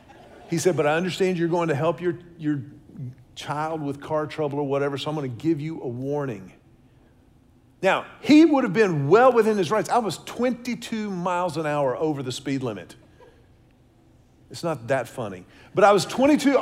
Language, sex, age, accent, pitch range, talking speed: English, male, 50-69, American, 150-235 Hz, 185 wpm